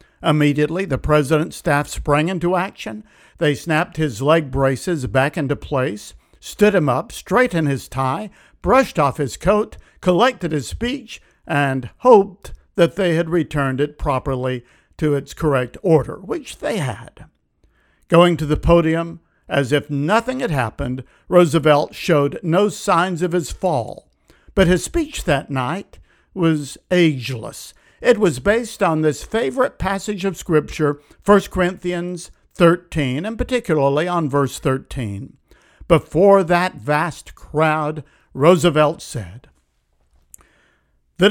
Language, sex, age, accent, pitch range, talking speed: English, male, 60-79, American, 145-190 Hz, 130 wpm